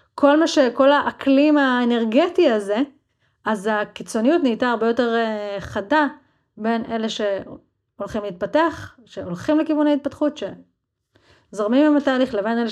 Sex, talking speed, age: female, 120 wpm, 30-49